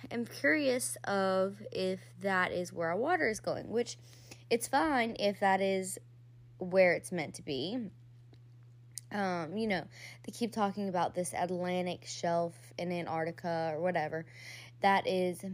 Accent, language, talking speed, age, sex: American, English, 145 wpm, 20-39, female